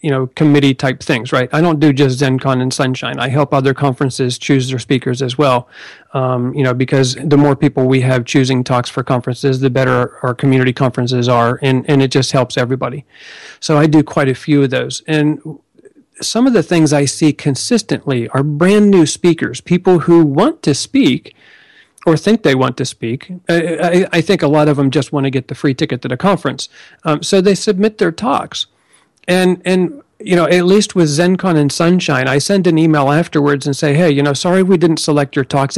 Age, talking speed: 40-59, 210 wpm